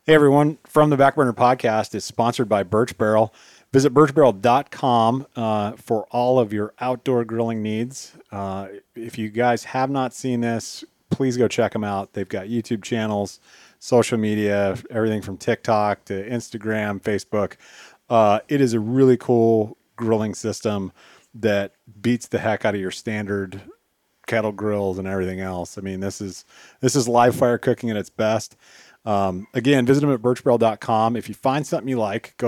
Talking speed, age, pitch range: 165 wpm, 30-49, 105-130 Hz